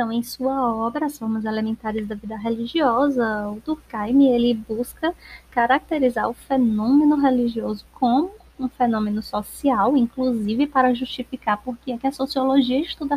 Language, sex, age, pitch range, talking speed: Portuguese, female, 20-39, 220-255 Hz, 140 wpm